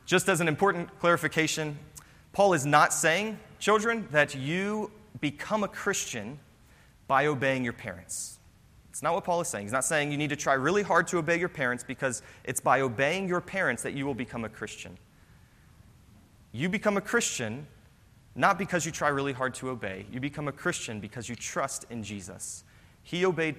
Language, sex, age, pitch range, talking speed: English, male, 30-49, 115-160 Hz, 185 wpm